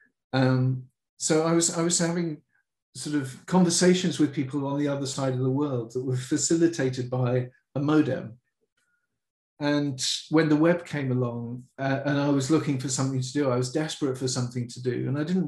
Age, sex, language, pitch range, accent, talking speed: 40-59, male, English, 130-155 Hz, British, 195 wpm